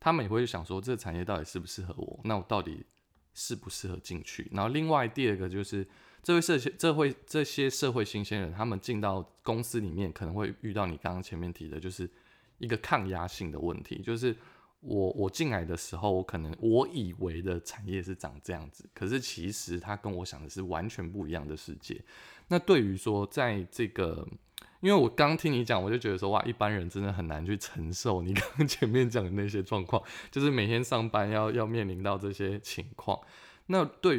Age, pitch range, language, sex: 20-39, 90-115 Hz, Chinese, male